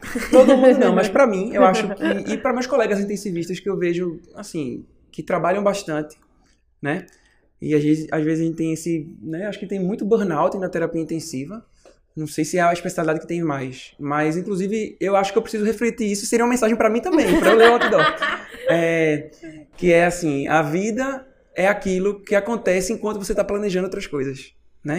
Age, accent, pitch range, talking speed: 20-39, Brazilian, 165-220 Hz, 205 wpm